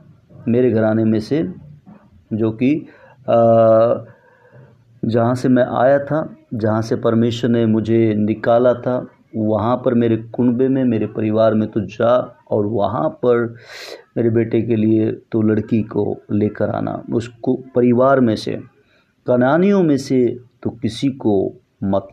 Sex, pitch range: male, 110-130 Hz